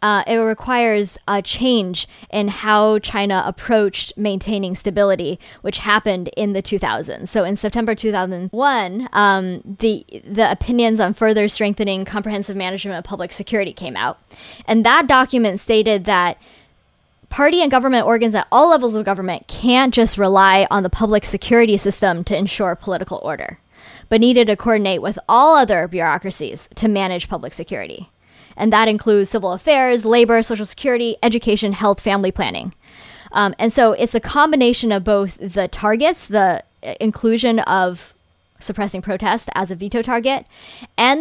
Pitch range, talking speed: 195-230 Hz, 150 wpm